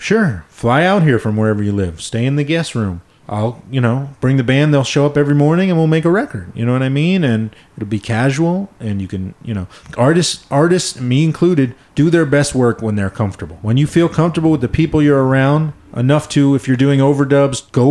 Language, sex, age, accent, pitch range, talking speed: English, male, 30-49, American, 110-155 Hz, 235 wpm